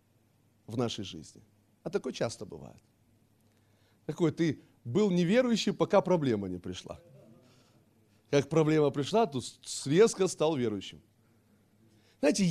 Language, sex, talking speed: Russian, male, 110 wpm